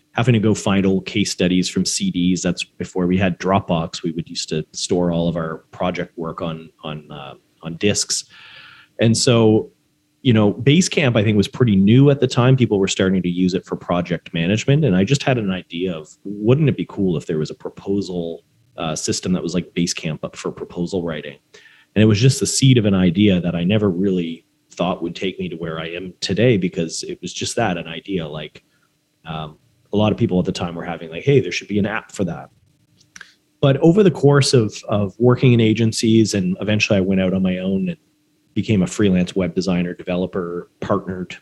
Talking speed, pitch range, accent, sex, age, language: 220 wpm, 90-115 Hz, American, male, 30-49, English